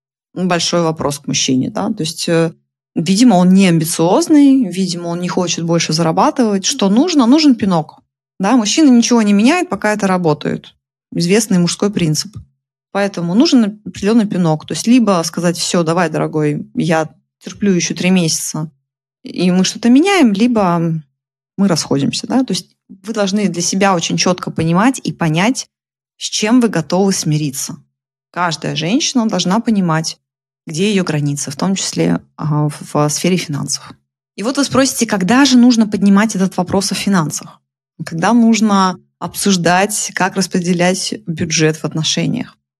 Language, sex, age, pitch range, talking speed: Russian, female, 20-39, 160-210 Hz, 145 wpm